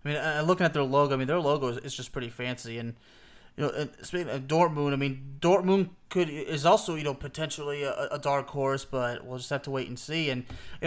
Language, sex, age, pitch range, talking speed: English, male, 30-49, 145-195 Hz, 255 wpm